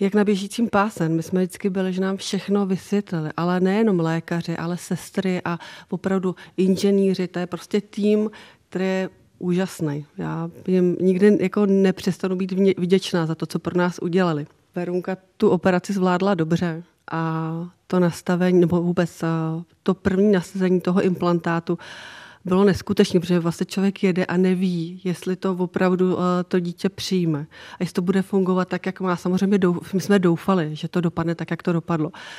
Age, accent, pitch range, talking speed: 40-59, native, 175-195 Hz, 165 wpm